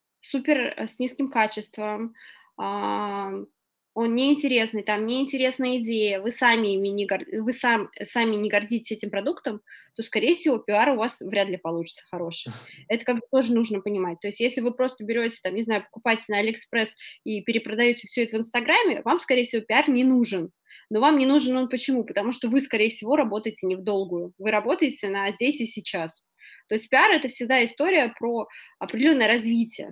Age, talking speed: 20-39, 180 wpm